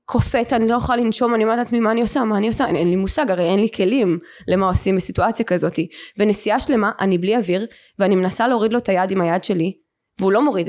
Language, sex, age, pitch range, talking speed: Hebrew, female, 20-39, 205-270 Hz, 240 wpm